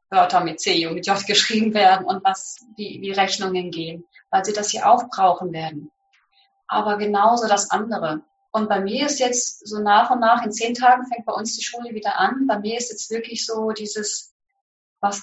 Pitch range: 210-265 Hz